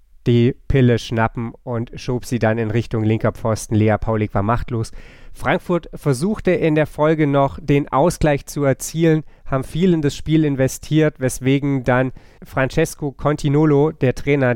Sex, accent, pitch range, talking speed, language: male, German, 120-145 Hz, 155 wpm, German